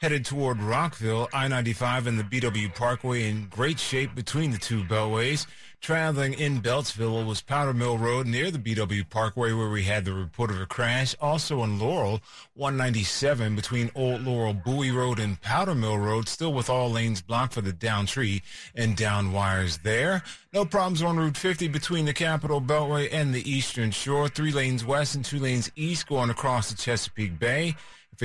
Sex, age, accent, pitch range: male, 30-49, American, 110-145 Hz